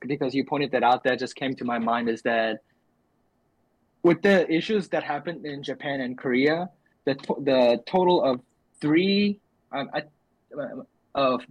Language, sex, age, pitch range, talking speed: English, male, 20-39, 125-150 Hz, 155 wpm